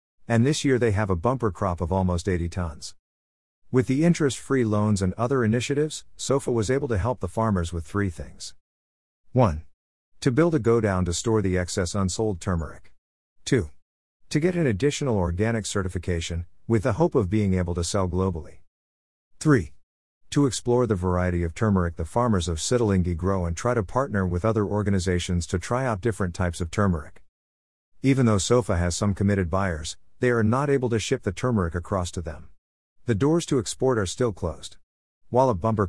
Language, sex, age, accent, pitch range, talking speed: English, male, 50-69, American, 85-115 Hz, 185 wpm